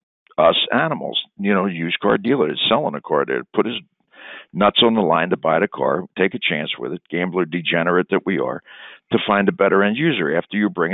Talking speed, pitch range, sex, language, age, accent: 225 wpm, 95-145 Hz, male, English, 60-79, American